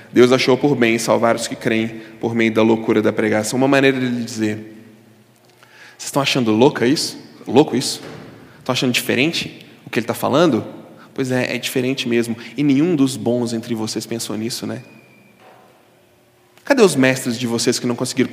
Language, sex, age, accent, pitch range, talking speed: Portuguese, male, 20-39, Brazilian, 115-180 Hz, 185 wpm